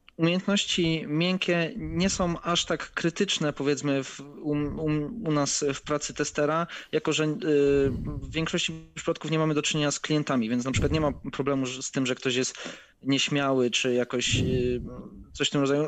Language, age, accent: Polish, 20-39, native